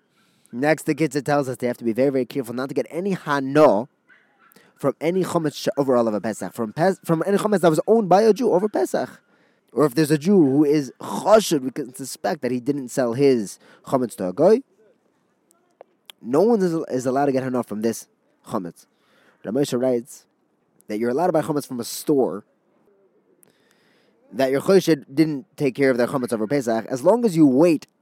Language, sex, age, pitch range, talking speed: English, male, 20-39, 125-170 Hz, 205 wpm